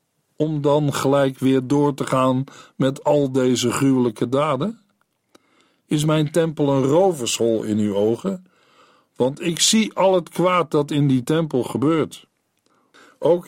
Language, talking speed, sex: Dutch, 140 wpm, male